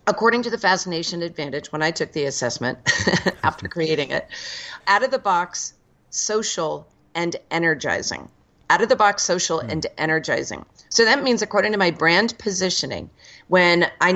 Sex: female